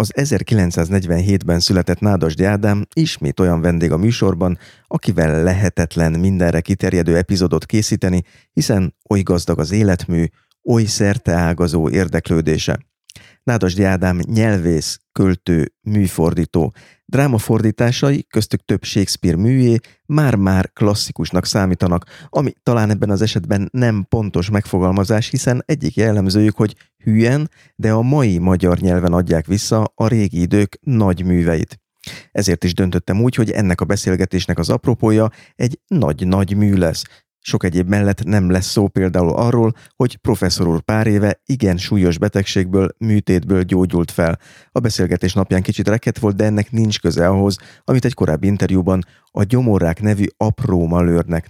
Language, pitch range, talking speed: Hungarian, 90-110 Hz, 130 wpm